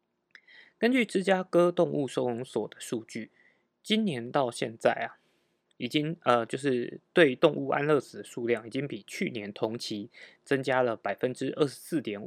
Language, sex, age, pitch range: Chinese, male, 20-39, 110-150 Hz